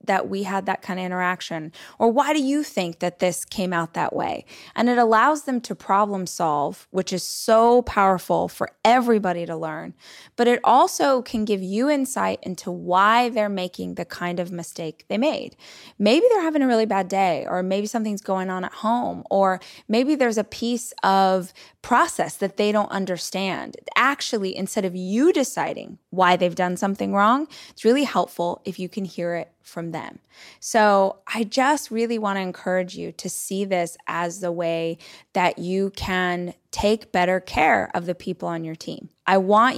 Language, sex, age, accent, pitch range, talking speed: English, female, 20-39, American, 180-230 Hz, 185 wpm